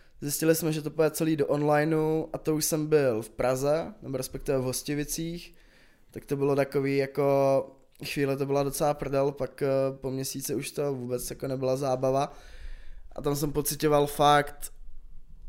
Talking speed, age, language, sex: 165 wpm, 20-39, Czech, male